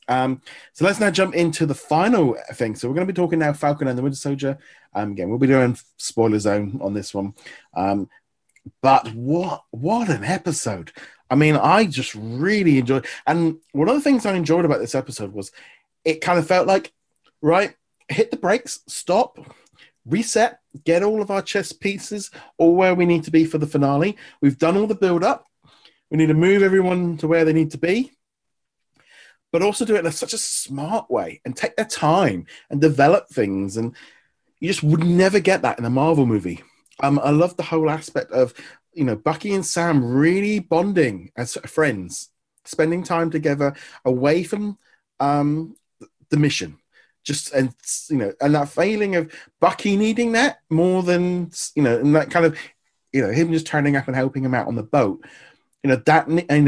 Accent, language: British, English